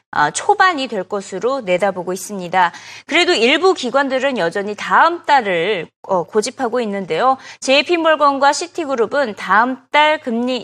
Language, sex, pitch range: Korean, female, 210-310 Hz